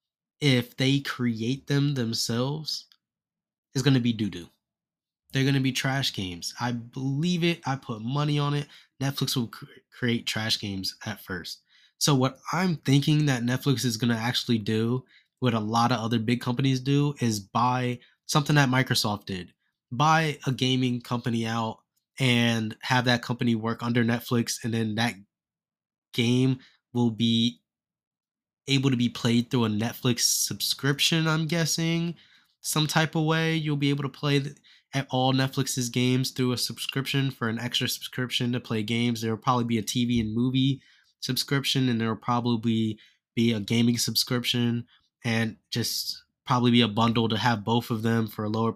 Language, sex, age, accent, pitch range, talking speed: English, male, 20-39, American, 115-135 Hz, 170 wpm